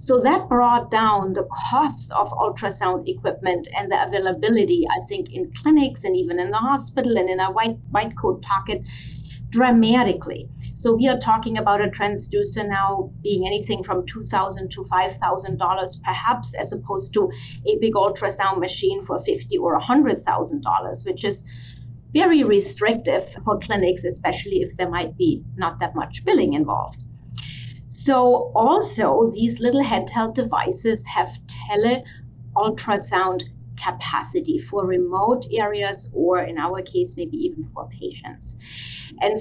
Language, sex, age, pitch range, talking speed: English, female, 30-49, 180-255 Hz, 140 wpm